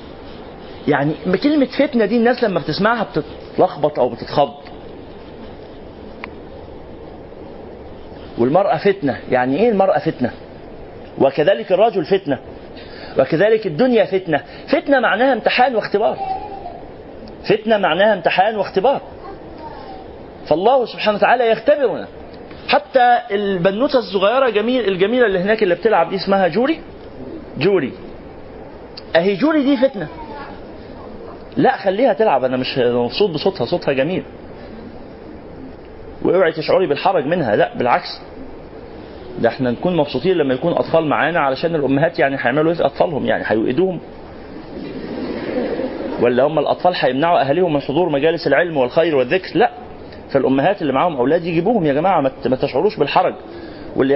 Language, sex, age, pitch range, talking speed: Arabic, male, 40-59, 145-230 Hz, 115 wpm